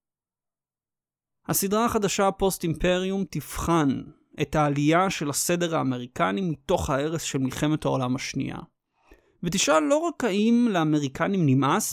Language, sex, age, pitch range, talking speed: Hebrew, male, 30-49, 145-190 Hz, 105 wpm